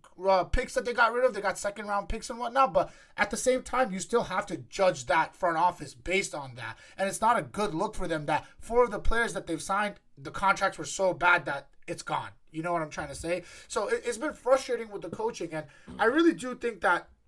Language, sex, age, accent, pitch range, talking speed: English, male, 20-39, American, 180-255 Hz, 255 wpm